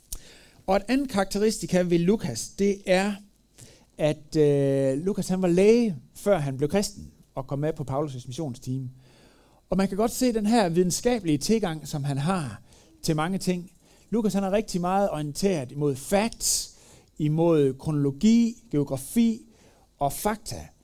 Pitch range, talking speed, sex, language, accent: 140-195 Hz, 155 wpm, male, Danish, native